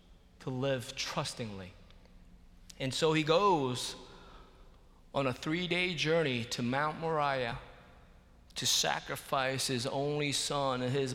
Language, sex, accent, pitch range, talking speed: English, male, American, 95-140 Hz, 110 wpm